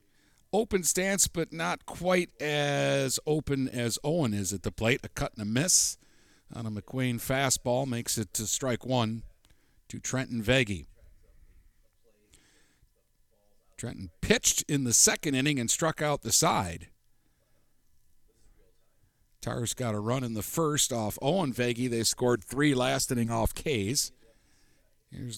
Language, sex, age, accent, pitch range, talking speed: English, male, 50-69, American, 110-135 Hz, 140 wpm